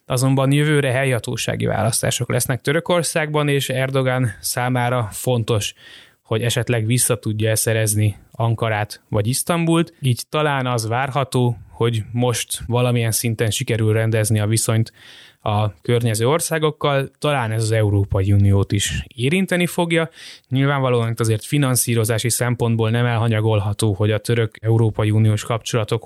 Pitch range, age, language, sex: 110-135 Hz, 20-39, Hungarian, male